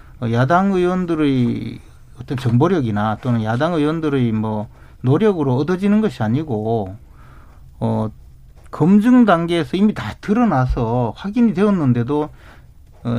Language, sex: Korean, male